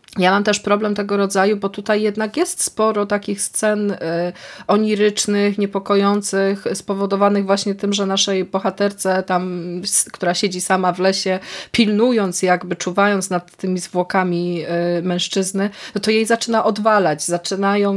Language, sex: Polish, female